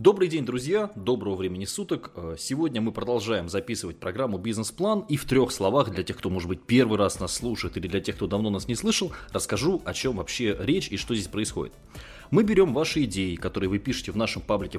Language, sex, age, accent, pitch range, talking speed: Russian, male, 20-39, native, 95-135 Hz, 210 wpm